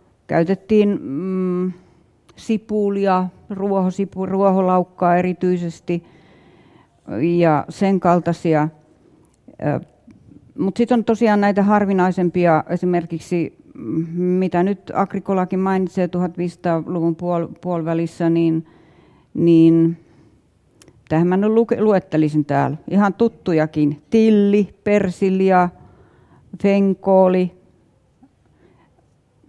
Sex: female